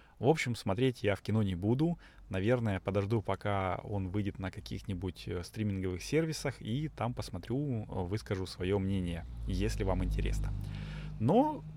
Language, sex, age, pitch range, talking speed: Russian, male, 30-49, 95-120 Hz, 140 wpm